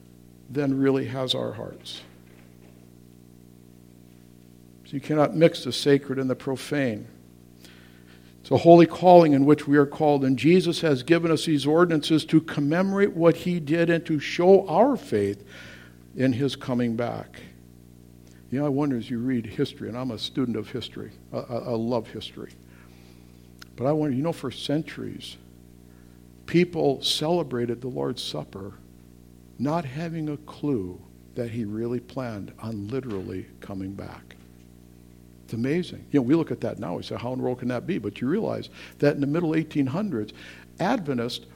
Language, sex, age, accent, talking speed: English, male, 60-79, American, 165 wpm